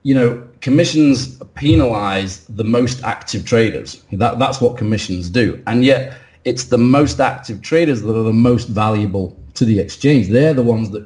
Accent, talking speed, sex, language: British, 170 wpm, male, English